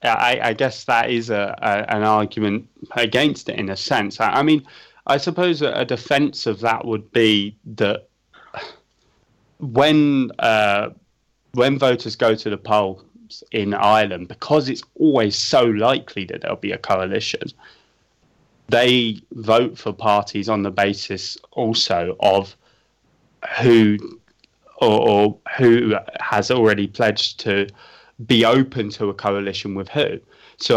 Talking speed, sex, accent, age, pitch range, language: 140 wpm, male, British, 20-39, 100-120 Hz, English